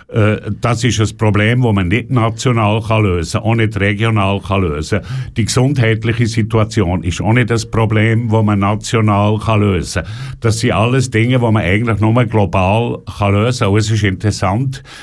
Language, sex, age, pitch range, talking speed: German, male, 60-79, 110-130 Hz, 165 wpm